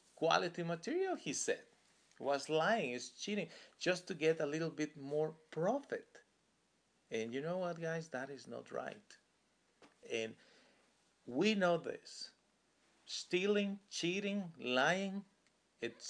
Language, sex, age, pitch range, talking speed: English, male, 40-59, 125-180 Hz, 125 wpm